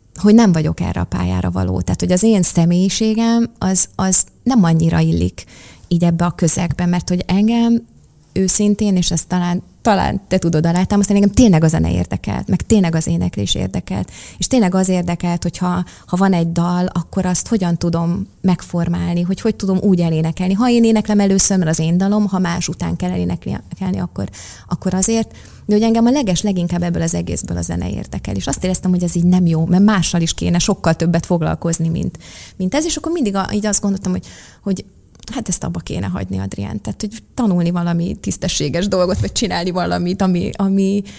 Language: Hungarian